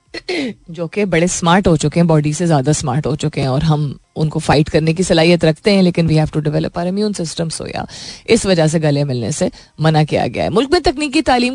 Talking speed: 240 wpm